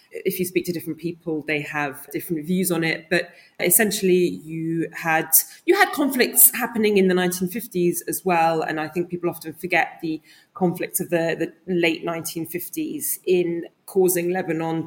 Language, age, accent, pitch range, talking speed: English, 20-39, British, 165-195 Hz, 165 wpm